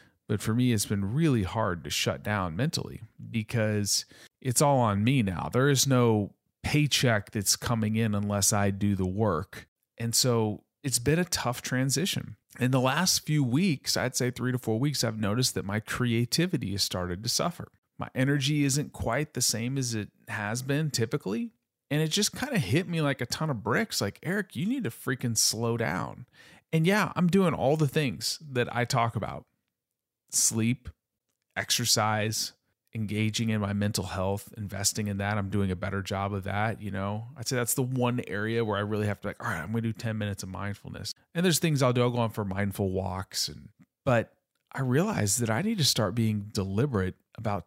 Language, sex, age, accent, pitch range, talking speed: English, male, 40-59, American, 105-145 Hz, 205 wpm